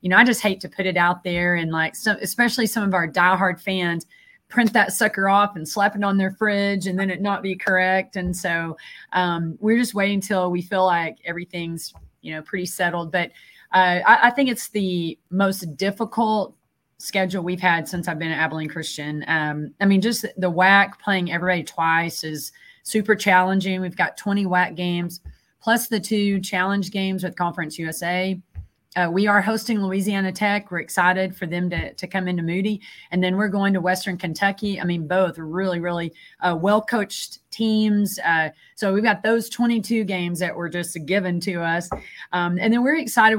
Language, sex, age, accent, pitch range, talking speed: English, female, 30-49, American, 175-205 Hz, 195 wpm